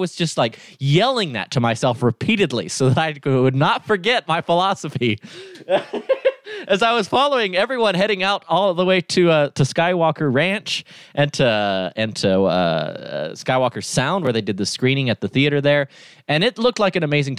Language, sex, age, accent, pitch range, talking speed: English, male, 20-39, American, 130-195 Hz, 190 wpm